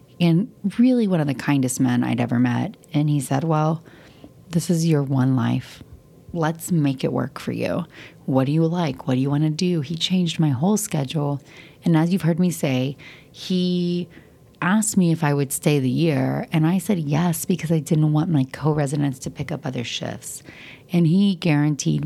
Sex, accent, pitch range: female, American, 130-165 Hz